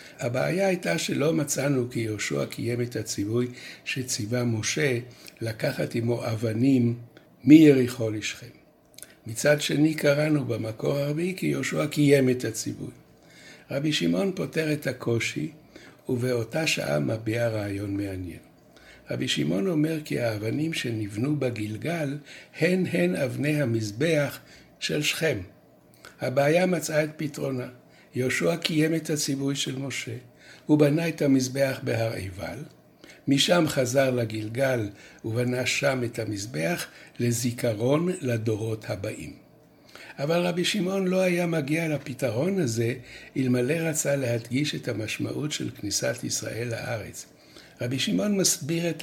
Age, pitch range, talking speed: 60-79, 115-150 Hz, 115 wpm